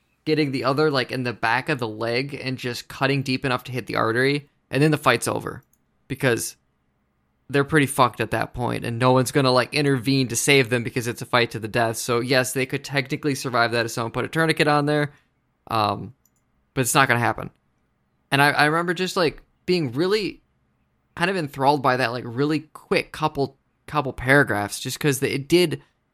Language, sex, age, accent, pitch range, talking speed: English, male, 20-39, American, 120-145 Hz, 210 wpm